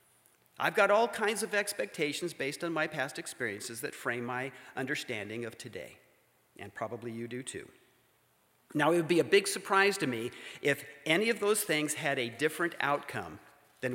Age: 50-69